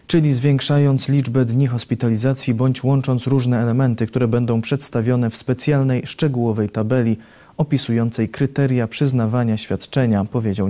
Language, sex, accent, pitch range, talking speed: Polish, male, native, 115-135 Hz, 120 wpm